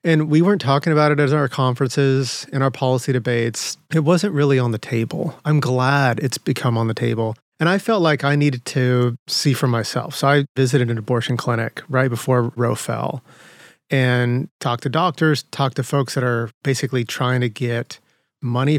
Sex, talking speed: male, 190 wpm